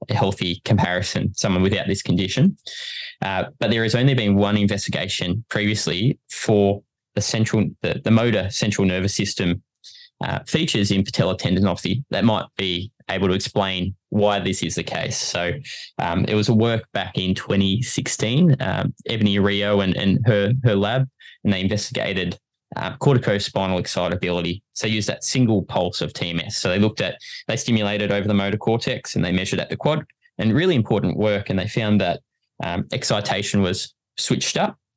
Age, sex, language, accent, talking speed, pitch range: 20-39, male, English, Australian, 170 wpm, 95-125 Hz